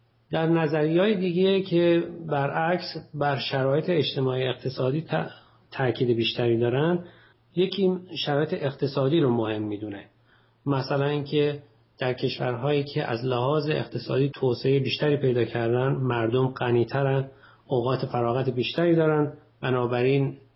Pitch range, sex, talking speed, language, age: 120-150 Hz, male, 115 wpm, Persian, 40-59